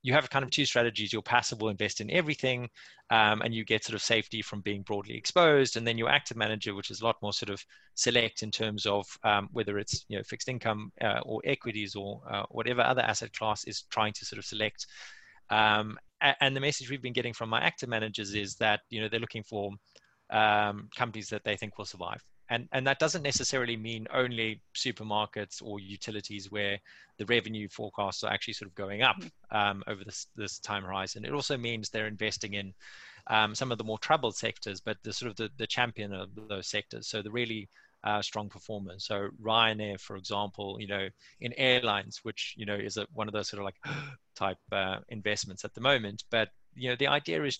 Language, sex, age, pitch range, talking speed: English, male, 20-39, 105-120 Hz, 220 wpm